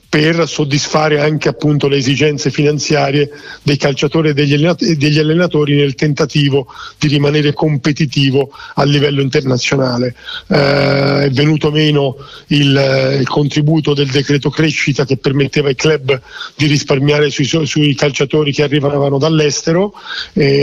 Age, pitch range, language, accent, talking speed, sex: 40-59, 140-160 Hz, Italian, native, 125 wpm, male